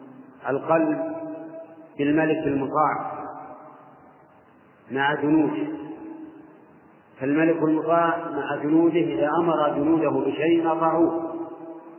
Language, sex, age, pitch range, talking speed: Arabic, male, 40-59, 145-165 Hz, 75 wpm